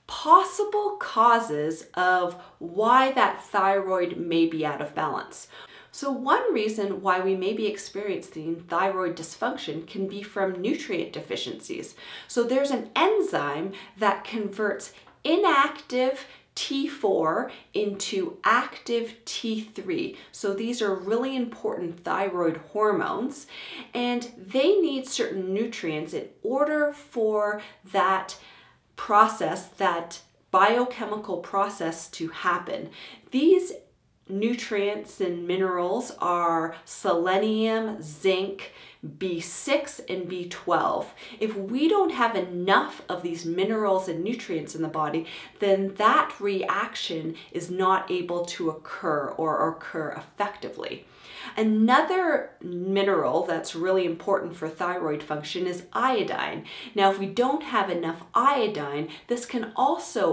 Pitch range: 180-245 Hz